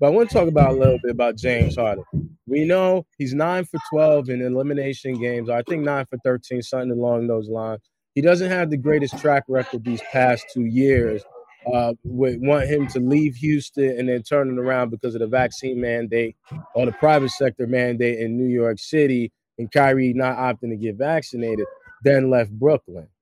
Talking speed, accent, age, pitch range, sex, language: 200 wpm, American, 20-39, 125-155 Hz, male, English